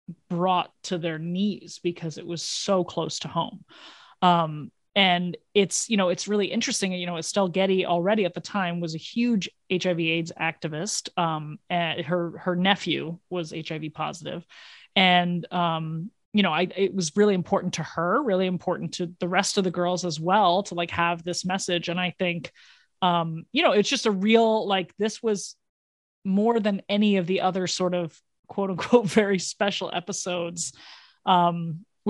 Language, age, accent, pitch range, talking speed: English, 30-49, American, 170-200 Hz, 175 wpm